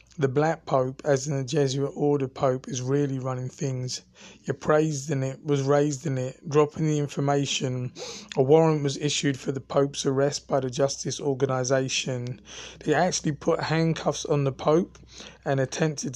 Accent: British